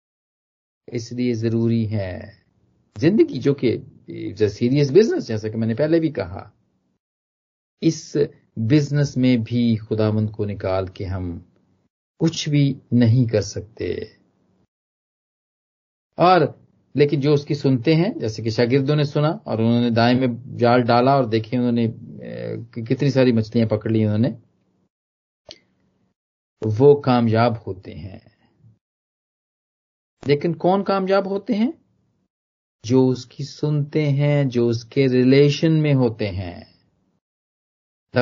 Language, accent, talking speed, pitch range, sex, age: Hindi, native, 115 wpm, 115-150 Hz, male, 40-59